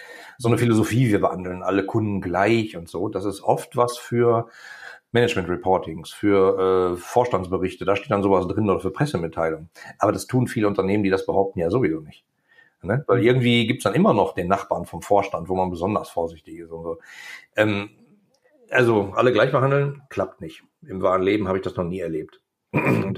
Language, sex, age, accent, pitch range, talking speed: German, male, 40-59, German, 95-125 Hz, 190 wpm